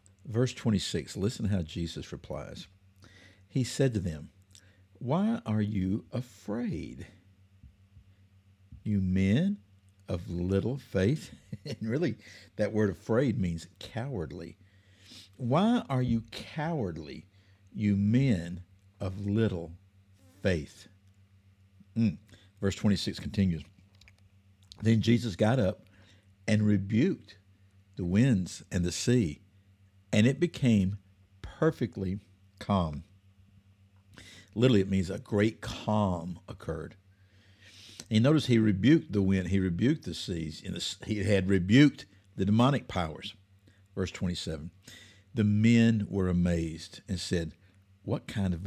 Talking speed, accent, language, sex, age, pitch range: 110 wpm, American, English, male, 60-79, 95-110 Hz